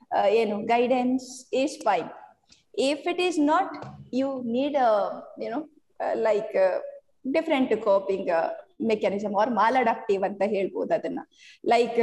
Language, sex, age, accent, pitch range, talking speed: Kannada, female, 20-39, native, 210-280 Hz, 145 wpm